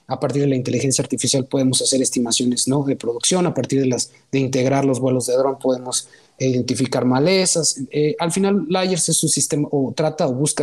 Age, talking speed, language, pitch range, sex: 30-49, 205 wpm, Spanish, 130-155 Hz, male